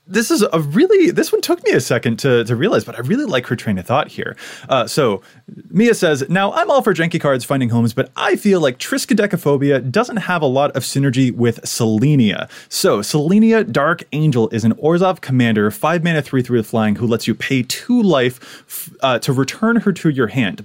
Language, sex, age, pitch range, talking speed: English, male, 20-39, 115-165 Hz, 220 wpm